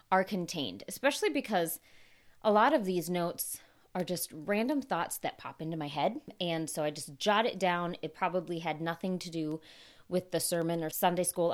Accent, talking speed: American, 190 wpm